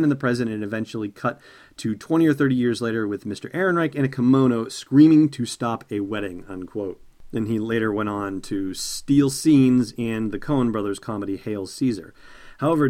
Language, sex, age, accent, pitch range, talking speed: English, male, 40-59, American, 110-135 Hz, 190 wpm